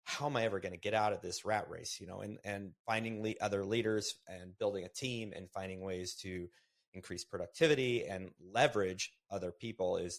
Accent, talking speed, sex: American, 205 wpm, male